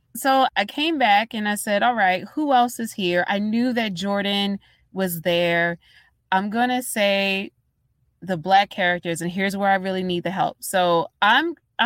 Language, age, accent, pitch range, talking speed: English, 20-39, American, 175-220 Hz, 180 wpm